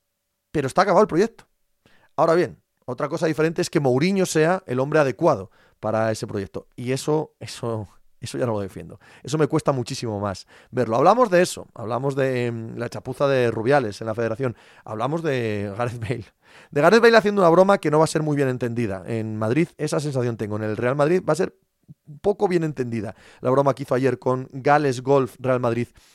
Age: 30-49